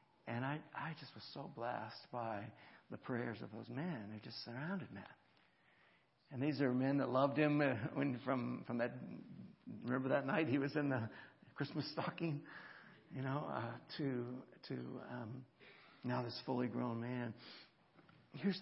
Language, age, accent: English, 60-79, American